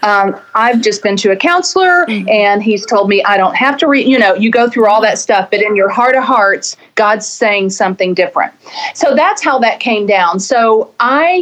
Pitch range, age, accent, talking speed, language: 195-235 Hz, 40-59, American, 220 wpm, English